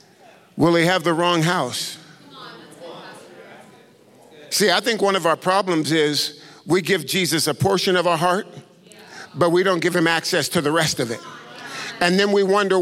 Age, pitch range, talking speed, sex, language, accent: 50-69, 155-195 Hz, 175 wpm, male, English, American